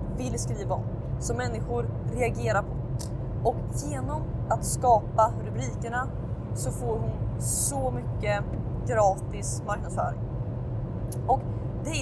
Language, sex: Swedish, female